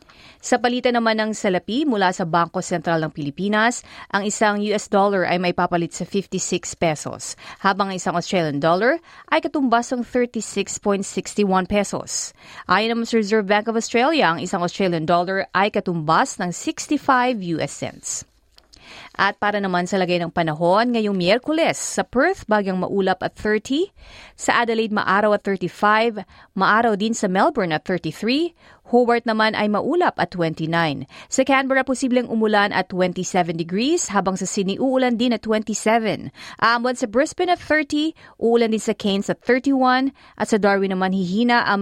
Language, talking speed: Filipino, 160 wpm